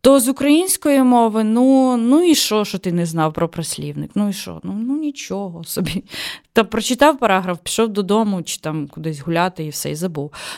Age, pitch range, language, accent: 20-39, 175-235 Hz, Ukrainian, native